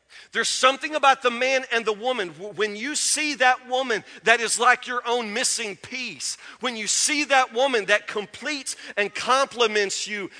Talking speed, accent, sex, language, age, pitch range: 175 wpm, American, male, English, 40-59, 205-265 Hz